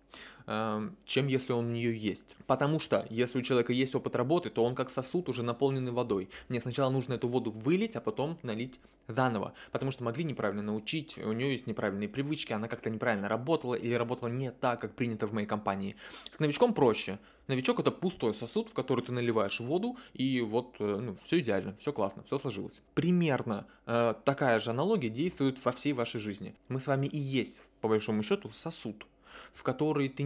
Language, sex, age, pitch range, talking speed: Russian, male, 20-39, 110-140 Hz, 190 wpm